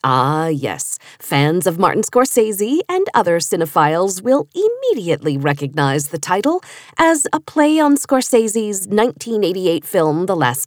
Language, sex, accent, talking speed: English, female, American, 130 wpm